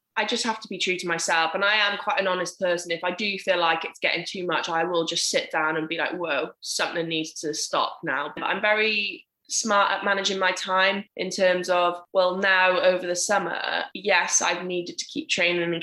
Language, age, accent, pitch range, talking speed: English, 10-29, British, 175-200 Hz, 230 wpm